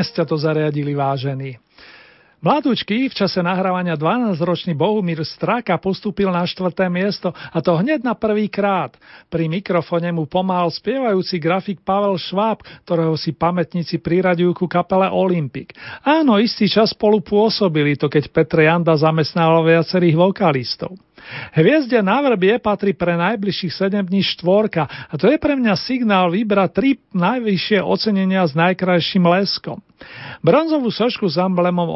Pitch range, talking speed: 165-200 Hz, 135 wpm